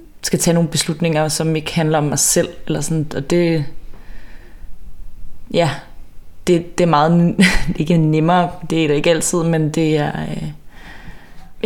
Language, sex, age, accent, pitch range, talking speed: Danish, female, 20-39, native, 150-180 Hz, 155 wpm